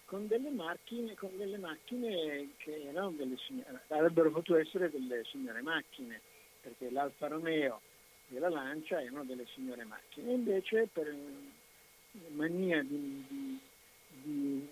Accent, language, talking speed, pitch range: native, Italian, 135 wpm, 145-190 Hz